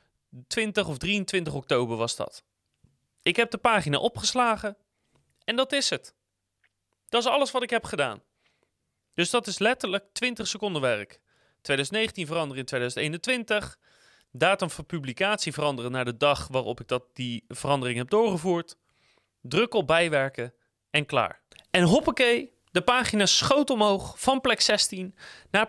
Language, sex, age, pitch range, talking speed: Dutch, male, 30-49, 140-210 Hz, 145 wpm